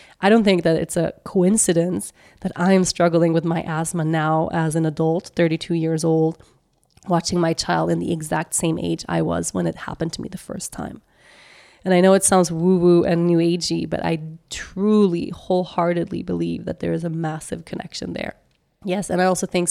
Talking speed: 195 wpm